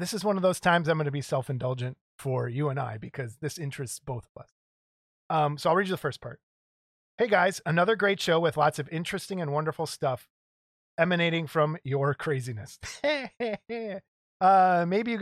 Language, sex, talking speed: English, male, 195 wpm